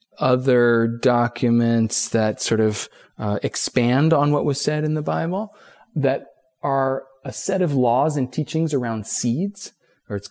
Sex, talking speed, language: male, 150 wpm, English